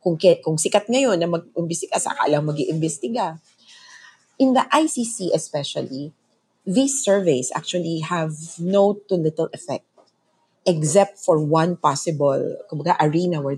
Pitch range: 155-215 Hz